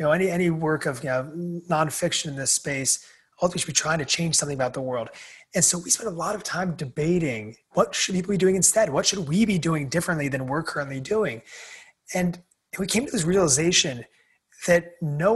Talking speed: 215 wpm